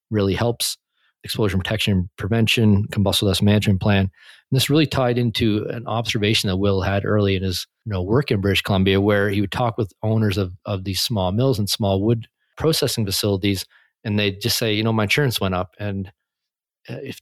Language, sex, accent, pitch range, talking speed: English, male, American, 100-115 Hz, 195 wpm